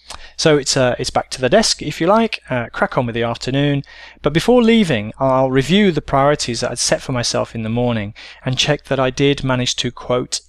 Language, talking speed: English, 230 wpm